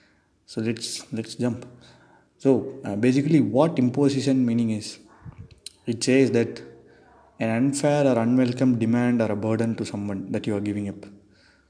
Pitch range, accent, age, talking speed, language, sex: 110-130 Hz, native, 20-39, 150 wpm, Tamil, male